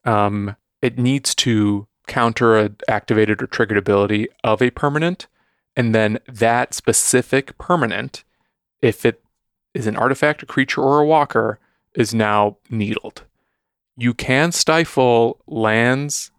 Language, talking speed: English, 130 wpm